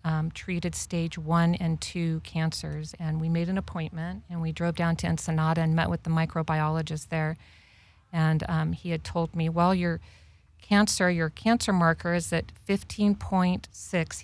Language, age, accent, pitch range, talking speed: English, 50-69, American, 160-180 Hz, 165 wpm